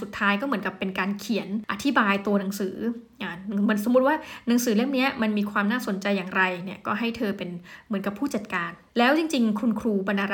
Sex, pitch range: female, 200-245 Hz